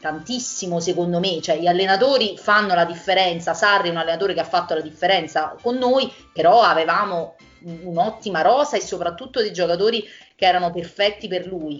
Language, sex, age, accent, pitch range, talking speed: Italian, female, 30-49, native, 175-225 Hz, 170 wpm